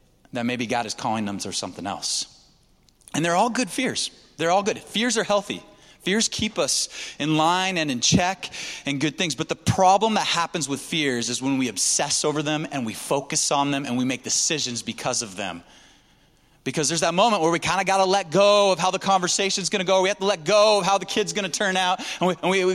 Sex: male